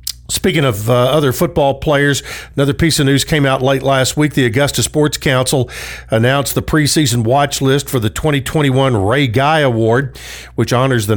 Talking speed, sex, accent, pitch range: 175 wpm, male, American, 125-150 Hz